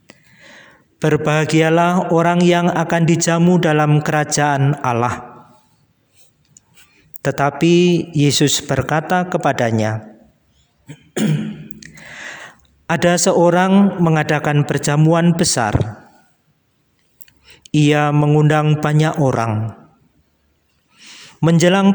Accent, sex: native, male